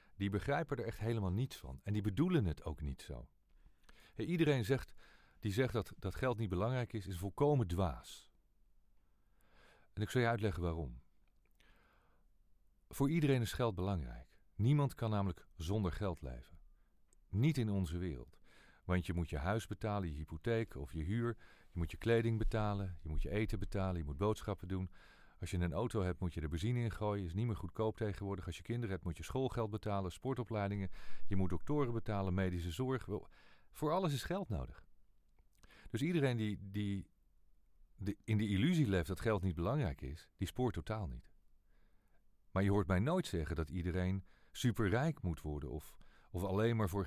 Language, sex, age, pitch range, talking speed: English, male, 40-59, 90-115 Hz, 180 wpm